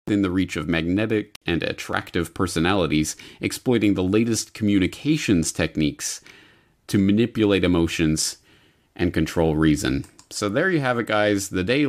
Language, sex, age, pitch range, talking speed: English, male, 30-49, 80-100 Hz, 135 wpm